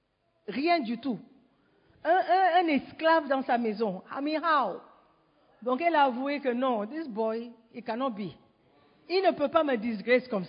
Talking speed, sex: 185 wpm, female